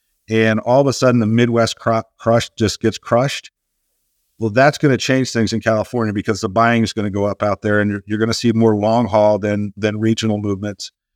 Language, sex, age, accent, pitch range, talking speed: English, male, 50-69, American, 110-120 Hz, 230 wpm